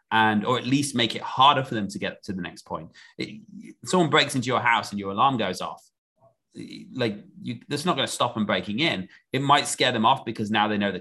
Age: 30-49